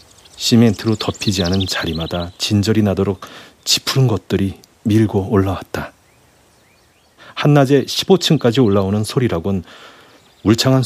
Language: Korean